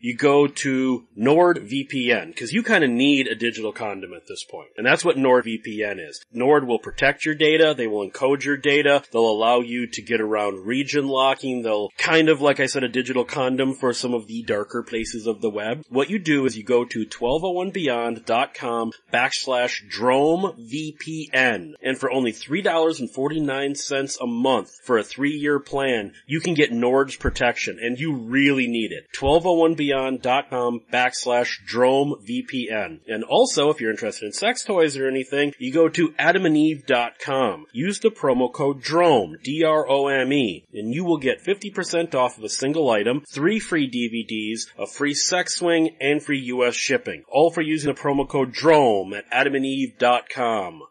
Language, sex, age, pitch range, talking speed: English, male, 30-49, 120-155 Hz, 160 wpm